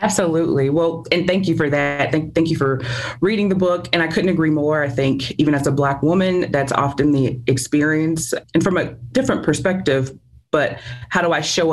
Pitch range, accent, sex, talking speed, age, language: 135-160 Hz, American, female, 205 wpm, 30-49, English